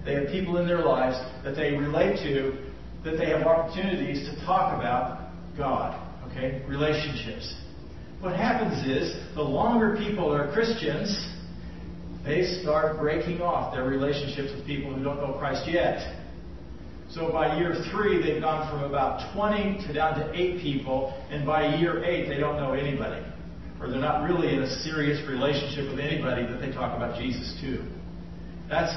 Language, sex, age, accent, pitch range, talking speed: English, male, 50-69, American, 120-155 Hz, 165 wpm